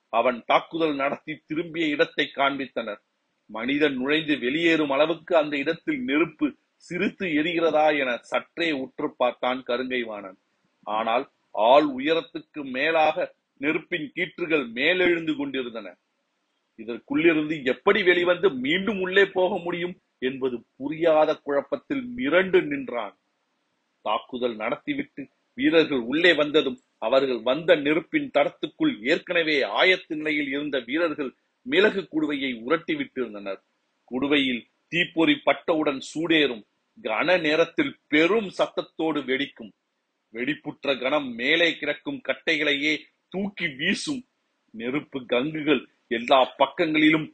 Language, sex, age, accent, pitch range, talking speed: Tamil, male, 40-59, native, 140-205 Hz, 95 wpm